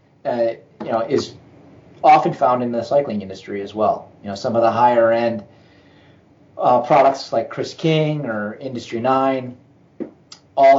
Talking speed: 155 wpm